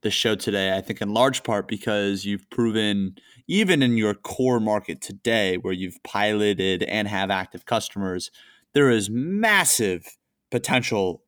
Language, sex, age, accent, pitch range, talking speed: English, male, 20-39, American, 100-125 Hz, 150 wpm